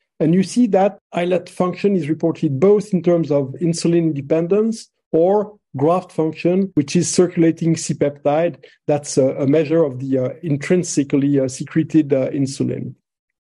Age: 50-69